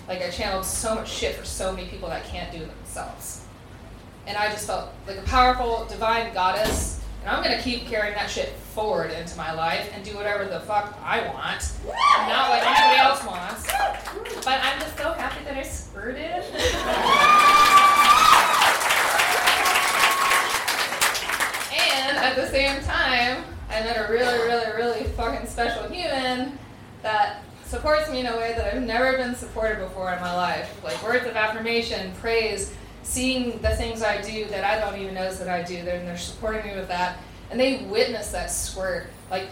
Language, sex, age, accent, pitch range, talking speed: English, female, 20-39, American, 205-270 Hz, 175 wpm